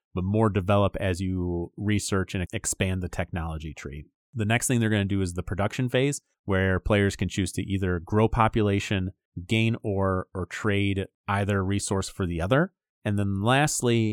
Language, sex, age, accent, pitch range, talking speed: English, male, 30-49, American, 95-115 Hz, 180 wpm